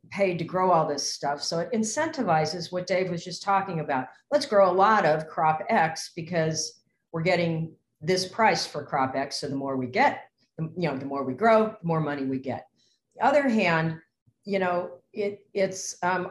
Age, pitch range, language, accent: 40-59, 155-190 Hz, English, American